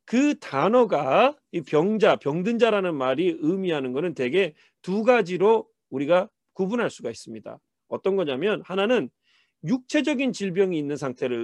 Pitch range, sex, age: 160-240 Hz, male, 40-59